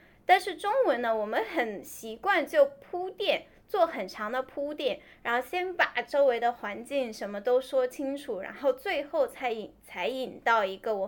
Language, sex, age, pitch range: Chinese, female, 10-29, 220-295 Hz